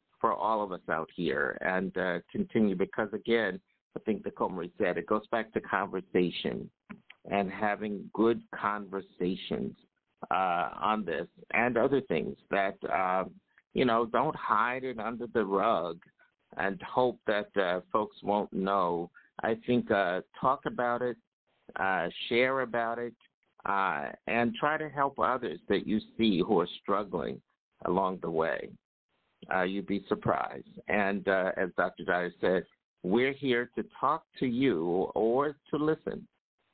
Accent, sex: American, male